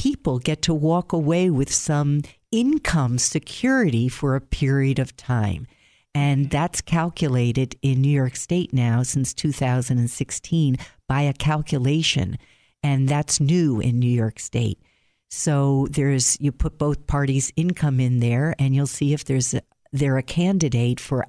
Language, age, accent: English, 50-69, American